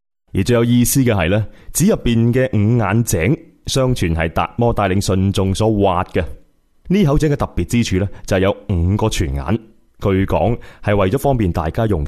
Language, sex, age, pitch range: Chinese, male, 20-39, 90-120 Hz